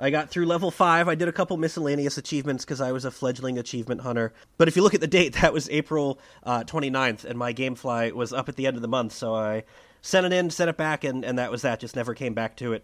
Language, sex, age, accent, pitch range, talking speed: English, male, 30-49, American, 115-155 Hz, 285 wpm